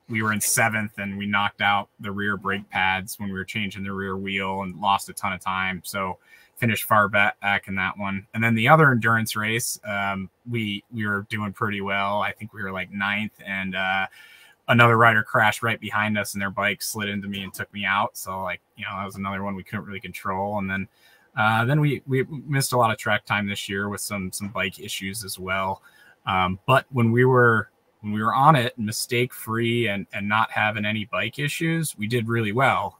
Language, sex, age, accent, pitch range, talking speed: English, male, 20-39, American, 95-115 Hz, 225 wpm